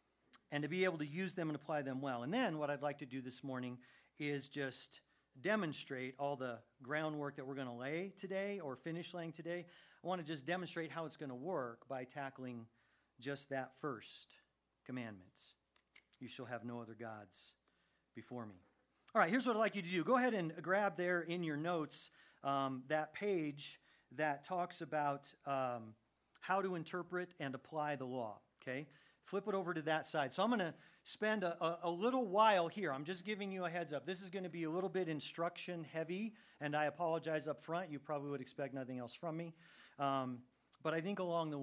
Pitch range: 130-175 Hz